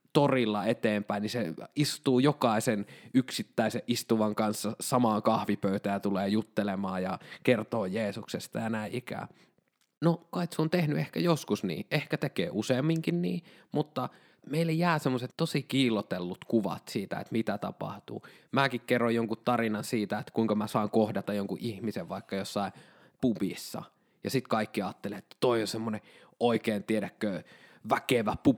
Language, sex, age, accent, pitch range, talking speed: Finnish, male, 20-39, native, 105-145 Hz, 145 wpm